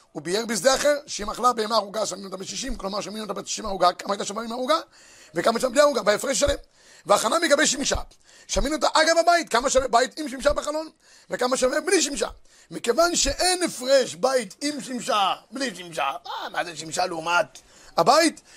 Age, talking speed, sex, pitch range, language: 30-49, 185 wpm, male, 230-280 Hz, Hebrew